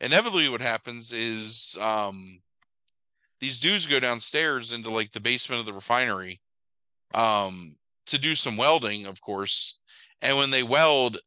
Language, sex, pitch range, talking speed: English, male, 110-145 Hz, 145 wpm